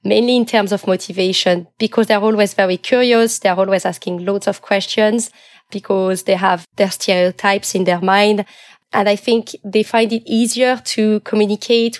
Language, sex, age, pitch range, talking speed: English, female, 20-39, 195-220 Hz, 165 wpm